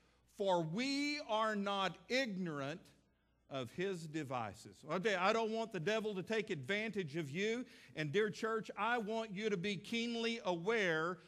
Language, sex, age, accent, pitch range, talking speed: English, male, 50-69, American, 165-225 Hz, 155 wpm